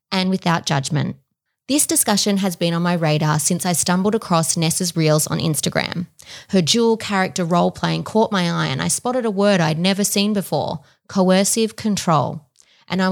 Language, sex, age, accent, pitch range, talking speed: English, female, 20-39, Australian, 170-205 Hz, 175 wpm